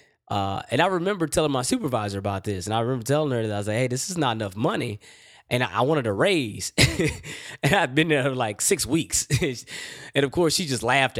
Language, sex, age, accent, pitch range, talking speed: English, male, 20-39, American, 105-145 Hz, 235 wpm